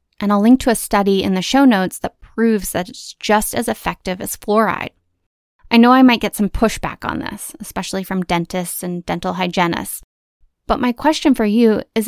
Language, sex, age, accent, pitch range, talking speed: English, female, 20-39, American, 180-225 Hz, 200 wpm